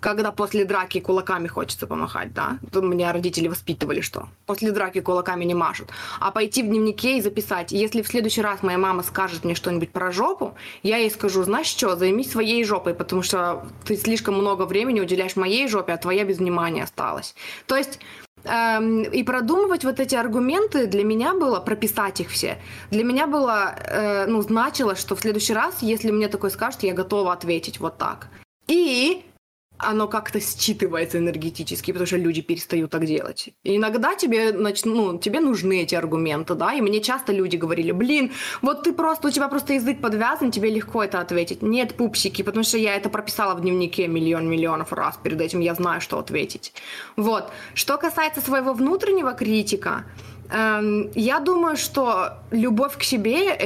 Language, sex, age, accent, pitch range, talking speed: Russian, female, 20-39, native, 180-235 Hz, 175 wpm